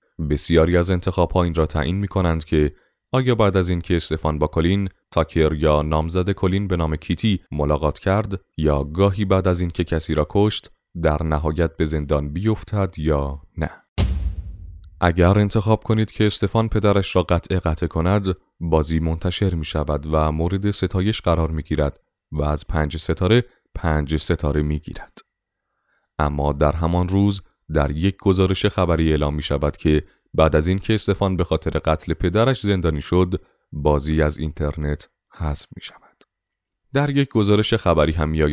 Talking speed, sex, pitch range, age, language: 155 wpm, male, 75-100 Hz, 30-49, Persian